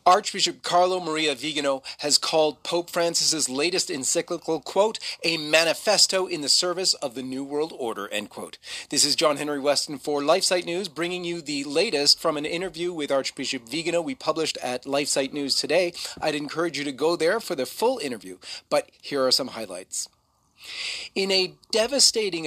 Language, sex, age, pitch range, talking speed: English, male, 40-59, 140-185 Hz, 175 wpm